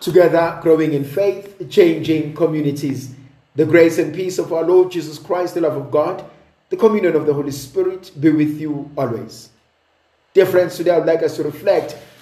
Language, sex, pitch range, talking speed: English, male, 150-220 Hz, 185 wpm